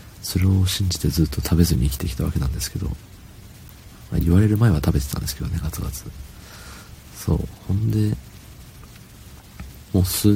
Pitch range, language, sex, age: 80-100 Hz, Japanese, male, 40-59